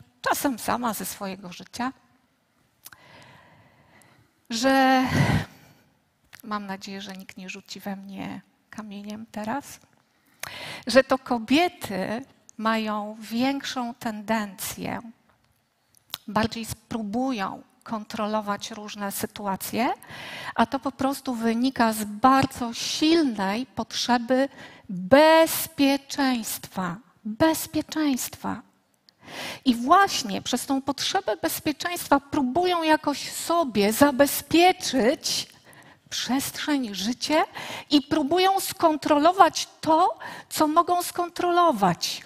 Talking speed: 80 wpm